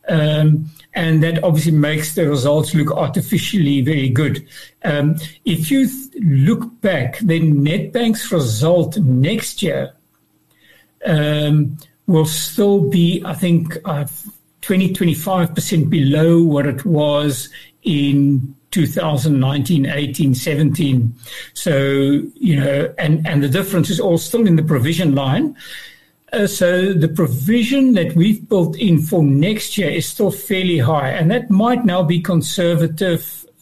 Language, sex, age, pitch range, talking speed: English, male, 60-79, 150-185 Hz, 140 wpm